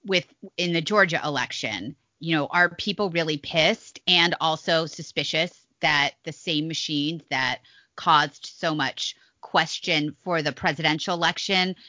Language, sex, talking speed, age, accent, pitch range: English, female, 135 wpm, 30-49, American, 165-215 Hz